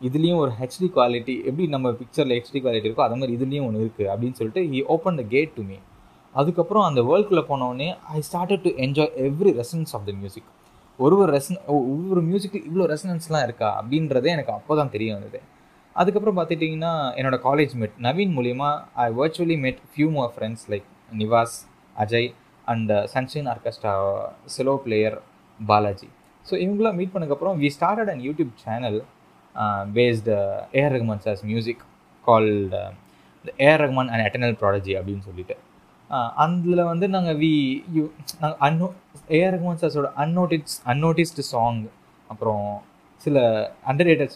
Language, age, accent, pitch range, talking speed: Tamil, 20-39, native, 110-160 Hz, 150 wpm